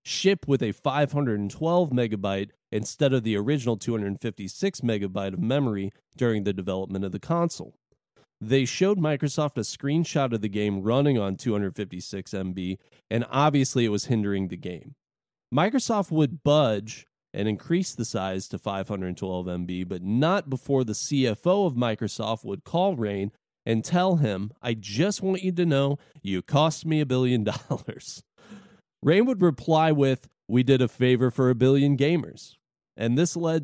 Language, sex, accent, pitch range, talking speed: English, male, American, 110-150 Hz, 155 wpm